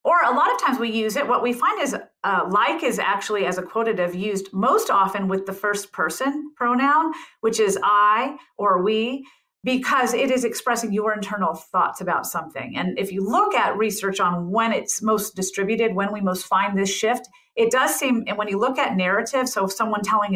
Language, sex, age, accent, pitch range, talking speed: English, female, 40-59, American, 200-295 Hz, 210 wpm